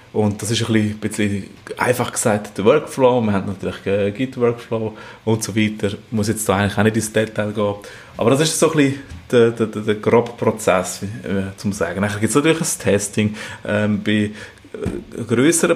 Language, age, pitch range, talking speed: German, 30-49, 105-125 Hz, 190 wpm